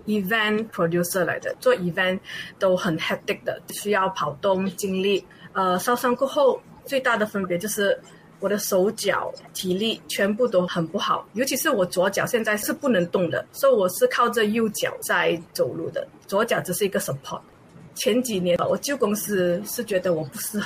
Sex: female